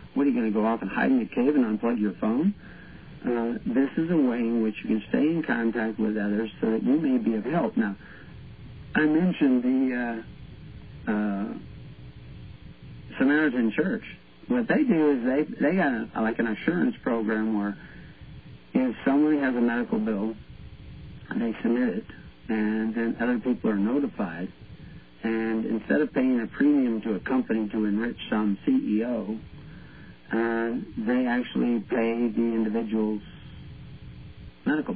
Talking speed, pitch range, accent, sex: 160 wpm, 110-130 Hz, American, male